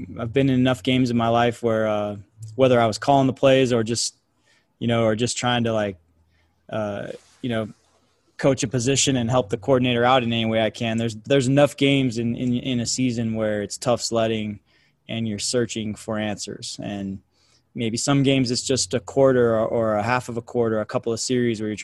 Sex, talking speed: male, 220 wpm